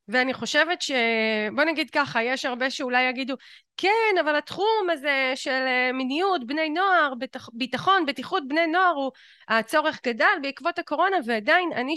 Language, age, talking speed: Hebrew, 30-49, 140 wpm